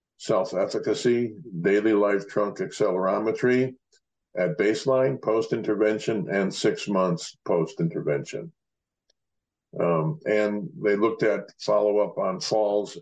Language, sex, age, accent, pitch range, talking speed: English, male, 60-79, American, 100-125 Hz, 90 wpm